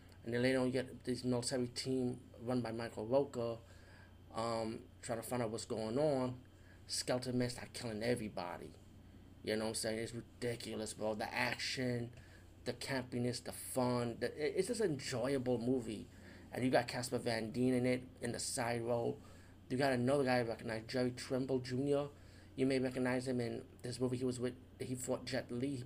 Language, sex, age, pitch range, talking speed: English, male, 30-49, 105-125 Hz, 190 wpm